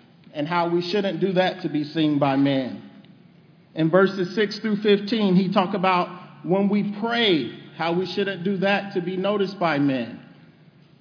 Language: English